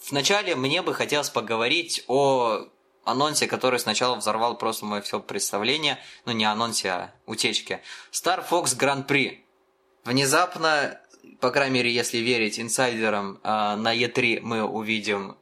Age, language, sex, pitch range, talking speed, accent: 20-39, Russian, male, 115-145 Hz, 130 wpm, native